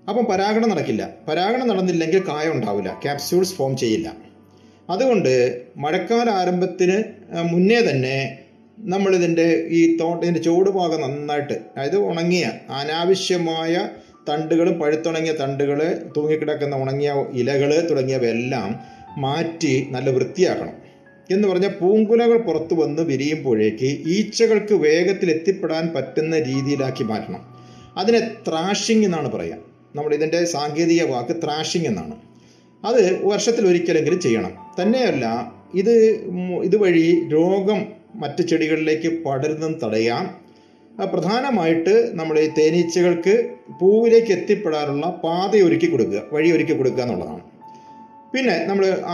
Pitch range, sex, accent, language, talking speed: 145-195 Hz, male, native, Malayalam, 95 wpm